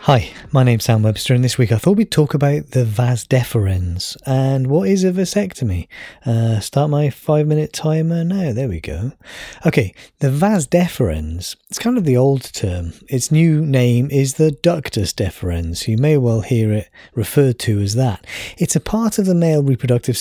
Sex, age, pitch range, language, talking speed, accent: male, 30-49, 115-155 Hz, English, 190 wpm, British